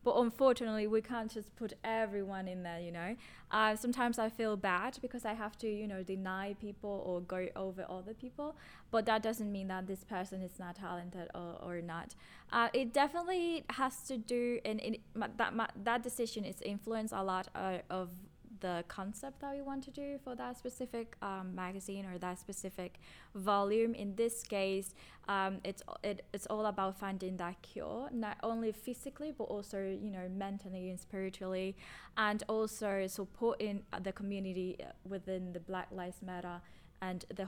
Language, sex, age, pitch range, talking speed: English, female, 10-29, 190-225 Hz, 175 wpm